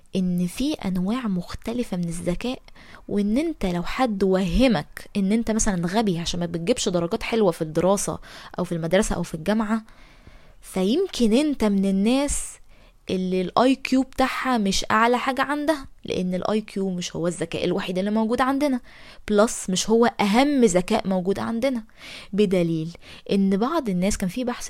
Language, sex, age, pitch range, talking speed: Arabic, female, 20-39, 185-230 Hz, 155 wpm